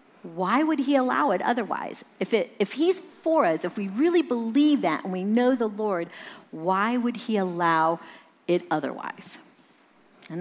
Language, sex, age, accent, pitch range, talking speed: English, female, 50-69, American, 185-265 Hz, 160 wpm